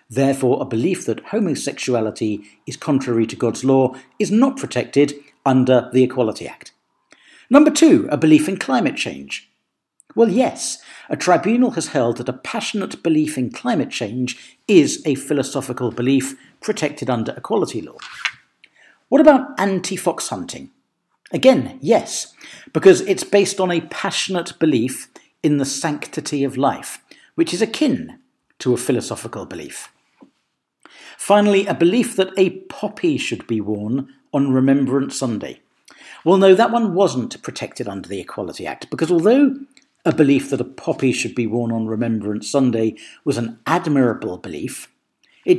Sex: male